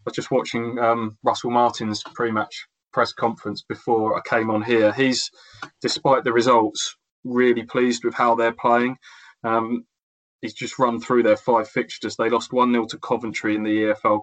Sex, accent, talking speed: male, British, 175 wpm